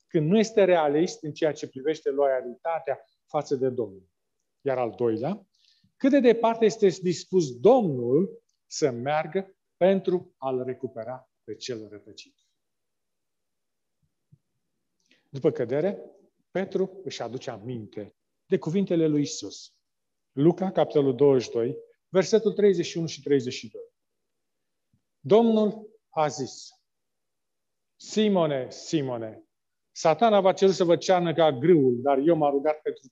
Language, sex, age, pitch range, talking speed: Romanian, male, 40-59, 135-195 Hz, 115 wpm